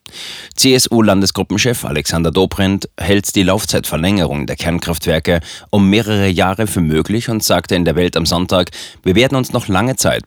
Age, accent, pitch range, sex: 30-49, German, 85-105 Hz, male